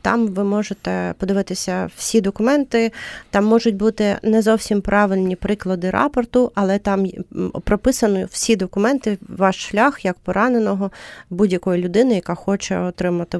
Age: 30-49